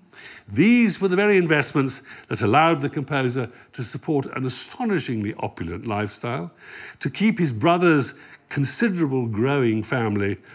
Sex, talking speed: male, 125 wpm